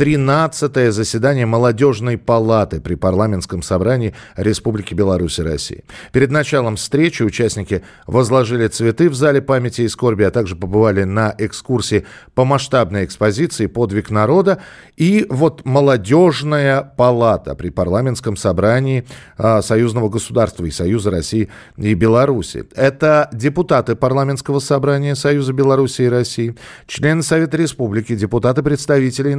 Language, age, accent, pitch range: Russian, 40-59, native, 110-145 Hz